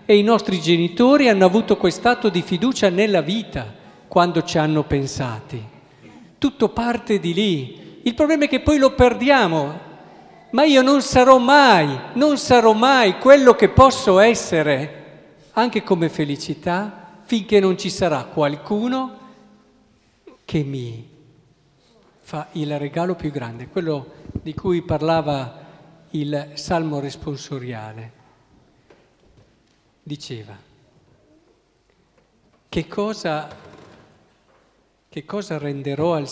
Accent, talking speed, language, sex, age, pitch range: native, 110 wpm, Italian, male, 50-69, 140-205 Hz